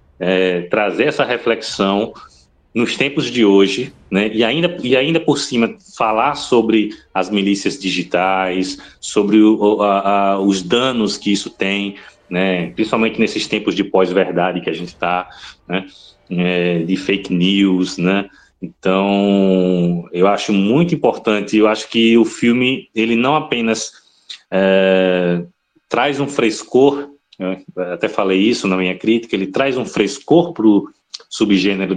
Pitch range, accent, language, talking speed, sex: 95-115 Hz, Brazilian, Portuguese, 145 wpm, male